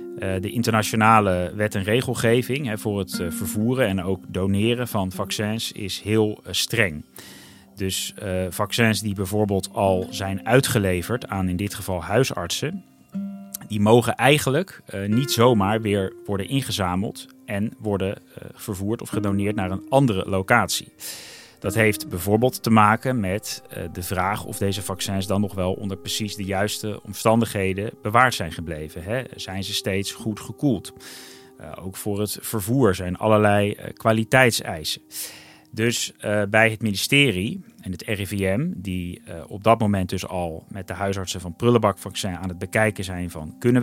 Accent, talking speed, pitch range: Dutch, 150 wpm, 95-115 Hz